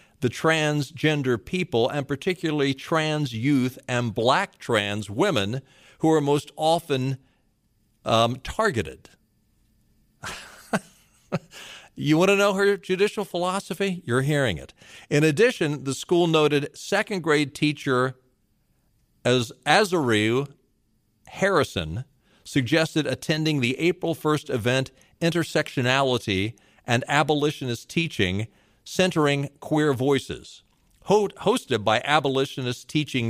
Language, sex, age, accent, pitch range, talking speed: English, male, 50-69, American, 115-155 Hz, 95 wpm